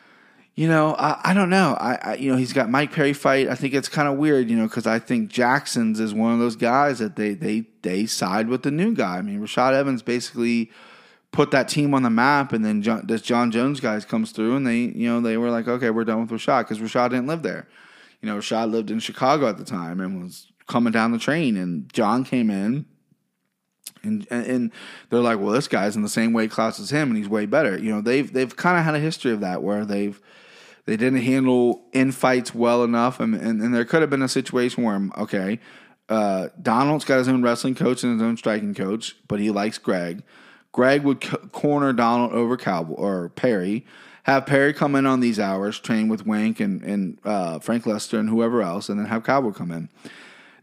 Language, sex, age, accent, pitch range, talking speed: English, male, 20-39, American, 110-135 Hz, 235 wpm